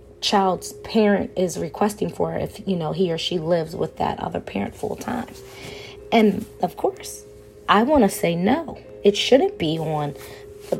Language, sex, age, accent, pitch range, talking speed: English, female, 20-39, American, 165-220 Hz, 165 wpm